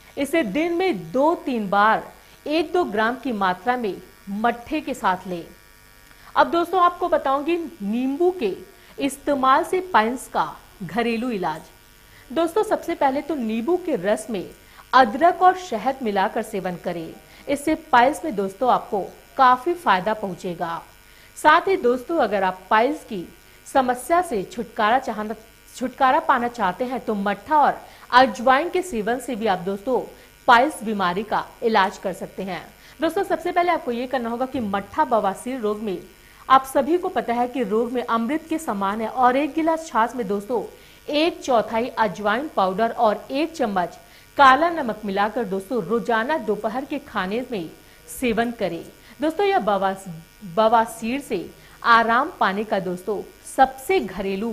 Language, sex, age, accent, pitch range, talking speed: Hindi, female, 50-69, native, 210-295 Hz, 150 wpm